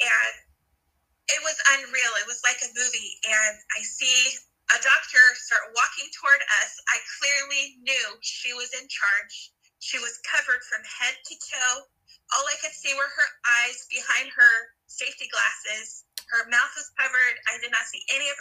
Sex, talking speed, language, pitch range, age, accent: female, 175 wpm, English, 230-280 Hz, 20-39, American